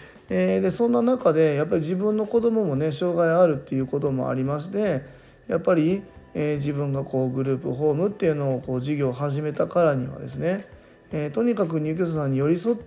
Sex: male